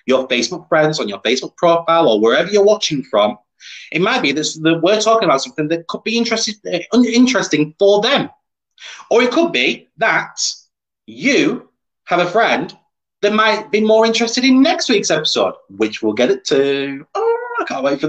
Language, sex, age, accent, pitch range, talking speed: English, male, 30-49, British, 140-220 Hz, 185 wpm